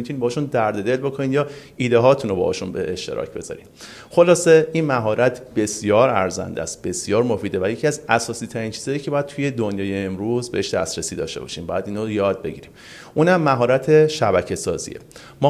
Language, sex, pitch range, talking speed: Persian, male, 105-140 Hz, 175 wpm